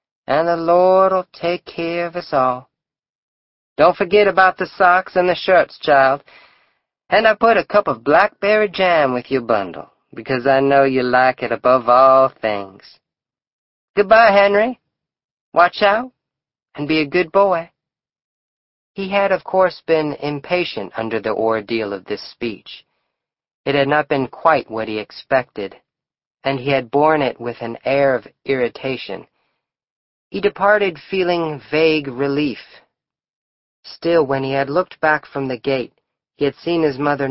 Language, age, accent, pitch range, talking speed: English, 40-59, American, 125-170 Hz, 155 wpm